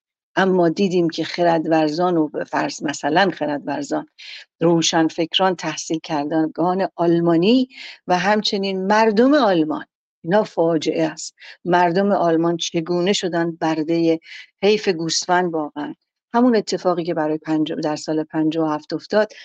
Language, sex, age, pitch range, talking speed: Persian, female, 50-69, 160-195 Hz, 120 wpm